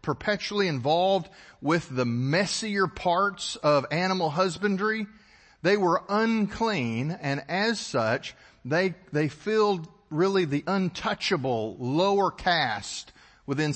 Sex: male